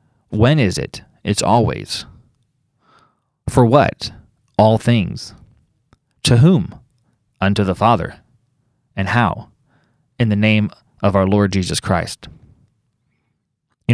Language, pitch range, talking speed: English, 105-125 Hz, 110 wpm